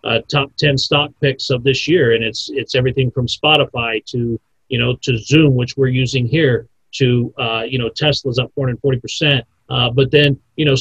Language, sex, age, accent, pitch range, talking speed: English, male, 40-59, American, 130-175 Hz, 195 wpm